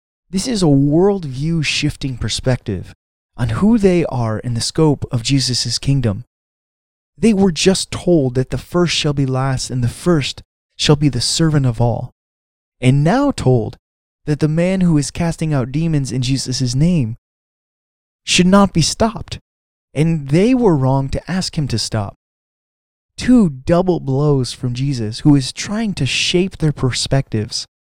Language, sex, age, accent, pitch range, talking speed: English, male, 20-39, American, 115-165 Hz, 155 wpm